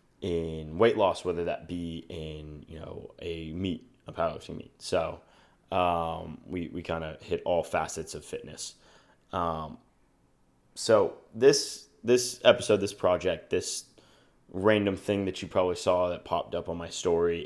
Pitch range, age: 85-100 Hz, 20-39